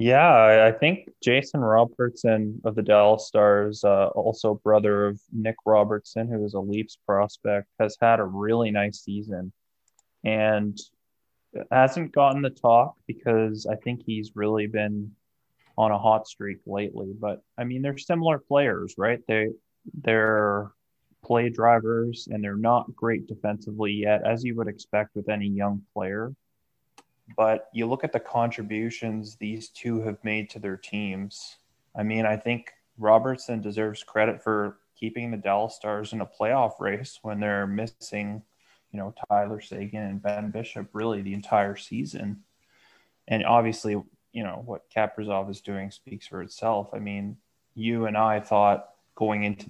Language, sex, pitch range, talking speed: English, male, 105-115 Hz, 155 wpm